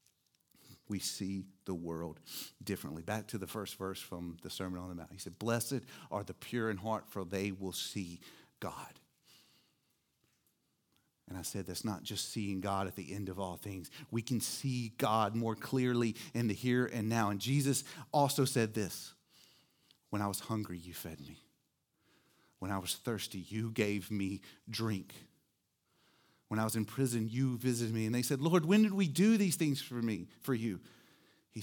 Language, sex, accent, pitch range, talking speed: English, male, American, 95-115 Hz, 185 wpm